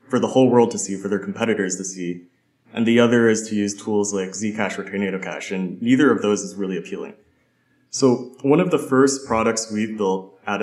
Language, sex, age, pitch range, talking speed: English, male, 20-39, 95-115 Hz, 220 wpm